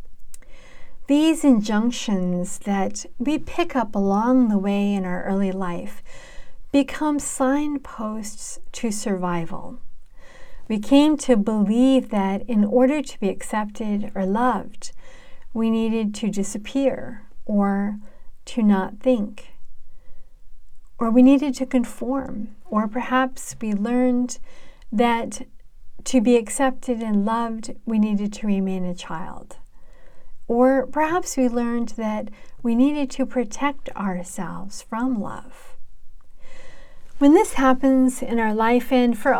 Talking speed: 120 wpm